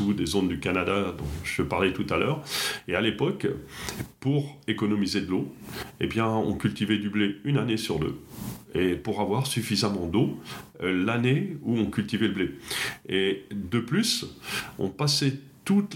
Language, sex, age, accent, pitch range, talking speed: French, male, 40-59, French, 105-145 Hz, 170 wpm